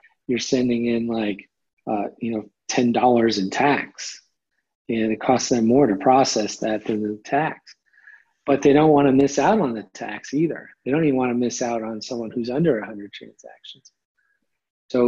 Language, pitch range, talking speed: English, 115-140 Hz, 185 wpm